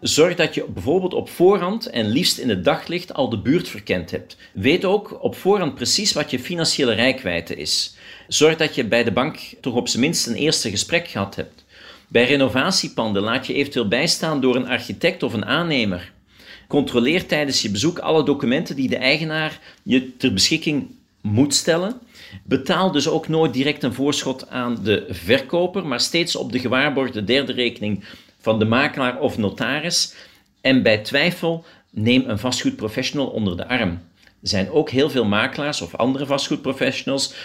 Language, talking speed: Dutch, 170 wpm